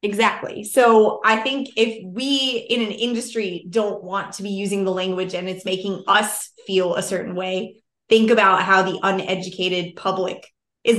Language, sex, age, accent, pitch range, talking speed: English, female, 20-39, American, 185-220 Hz, 170 wpm